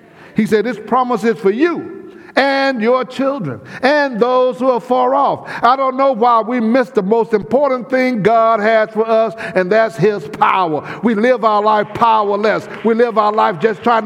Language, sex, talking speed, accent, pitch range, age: English, male, 190 wpm, American, 180-245 Hz, 60-79